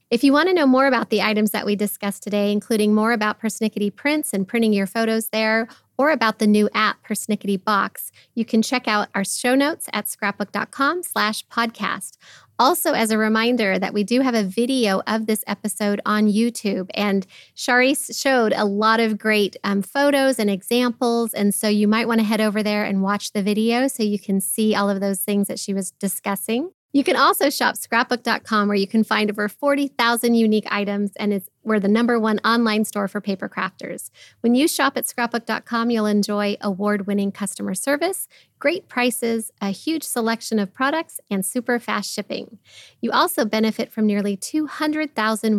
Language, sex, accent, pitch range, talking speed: English, female, American, 205-240 Hz, 185 wpm